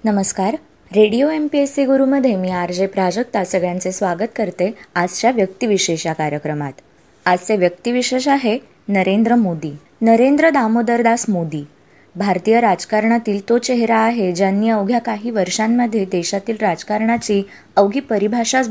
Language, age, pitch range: Marathi, 20-39, 180-230 Hz